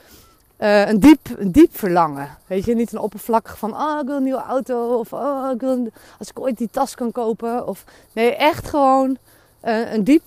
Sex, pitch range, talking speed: female, 200-255 Hz, 215 wpm